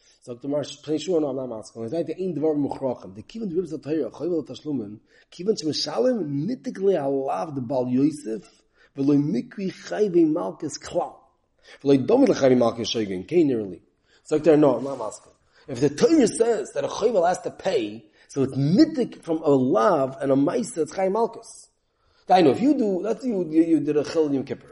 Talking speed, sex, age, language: 80 wpm, male, 30-49, English